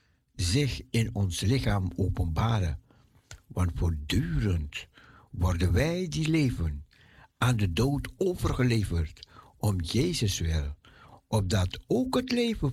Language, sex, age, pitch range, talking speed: Dutch, male, 60-79, 95-130 Hz, 105 wpm